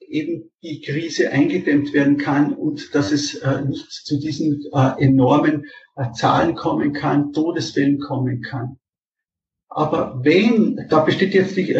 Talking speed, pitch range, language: 140 wpm, 145-200 Hz, German